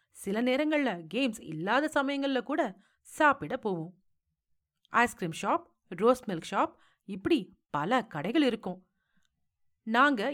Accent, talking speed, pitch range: native, 105 wpm, 175-265 Hz